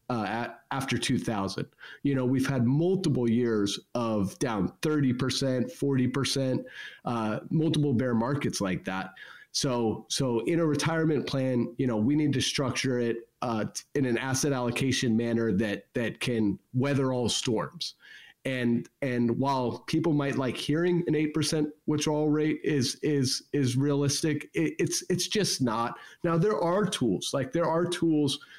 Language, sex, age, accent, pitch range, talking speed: English, male, 30-49, American, 120-150 Hz, 155 wpm